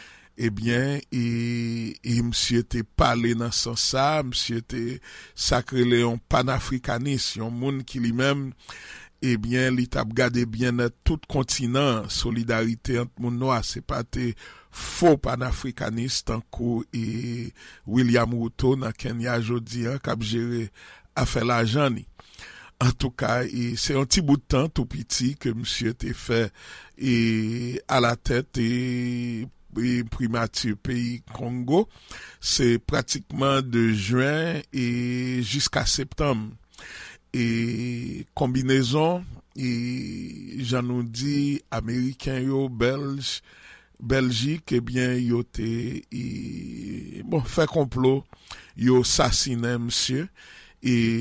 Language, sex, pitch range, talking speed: English, male, 115-130 Hz, 125 wpm